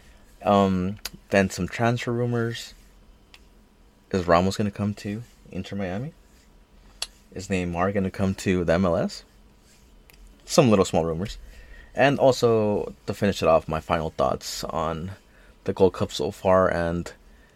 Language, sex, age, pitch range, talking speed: English, male, 30-49, 80-110 Hz, 140 wpm